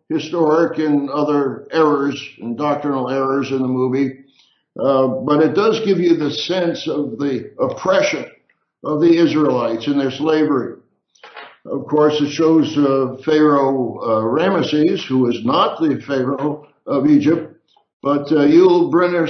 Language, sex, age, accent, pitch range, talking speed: English, male, 60-79, American, 135-160 Hz, 145 wpm